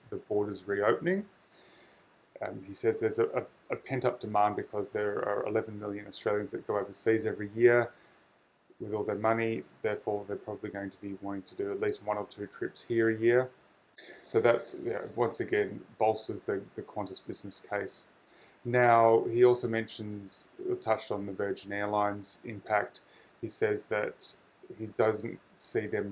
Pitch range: 100-125 Hz